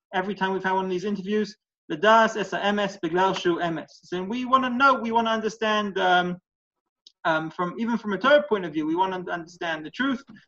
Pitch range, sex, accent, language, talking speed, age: 160-210 Hz, male, British, English, 225 wpm, 30-49